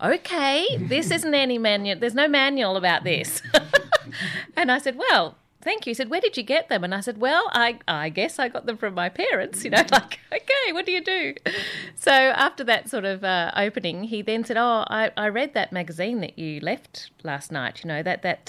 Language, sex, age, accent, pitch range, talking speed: English, female, 40-59, Australian, 170-240 Hz, 225 wpm